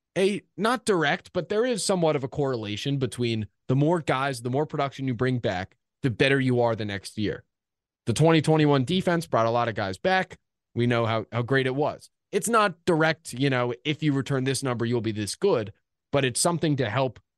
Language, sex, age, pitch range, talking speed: English, male, 20-39, 115-155 Hz, 215 wpm